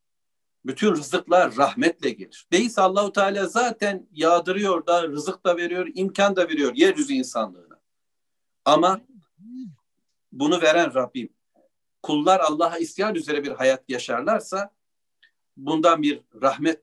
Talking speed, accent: 115 wpm, native